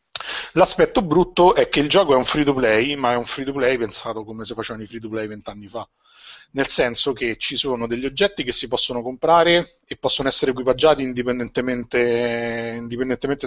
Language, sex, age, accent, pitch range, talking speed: Italian, male, 30-49, native, 110-130 Hz, 195 wpm